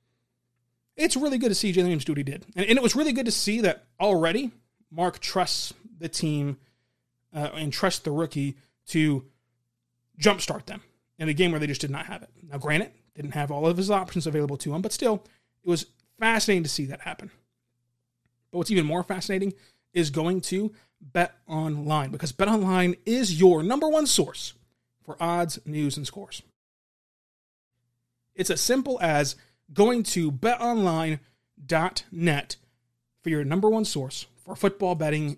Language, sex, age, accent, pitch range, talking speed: English, male, 30-49, American, 140-195 Hz, 170 wpm